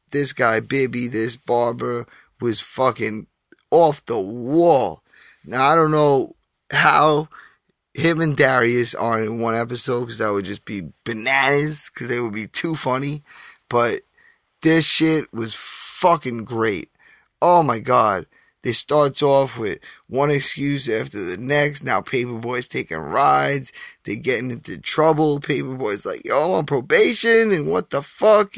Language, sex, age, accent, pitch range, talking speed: English, male, 20-39, American, 120-155 Hz, 145 wpm